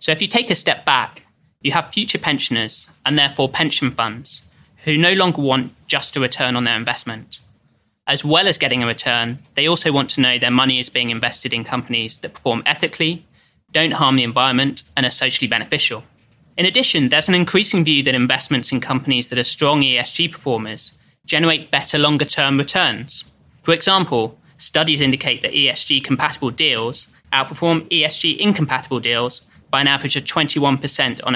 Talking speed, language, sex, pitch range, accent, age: 170 wpm, English, male, 125-155 Hz, British, 20-39